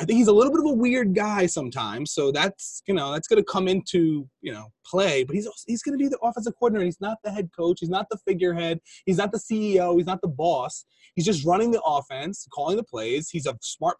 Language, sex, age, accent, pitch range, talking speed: English, male, 20-39, American, 150-210 Hz, 255 wpm